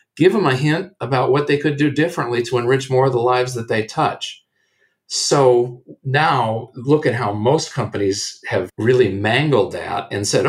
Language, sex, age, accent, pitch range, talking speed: English, male, 50-69, American, 115-160 Hz, 185 wpm